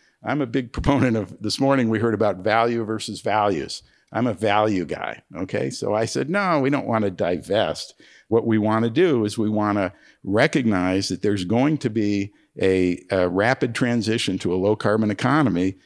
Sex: male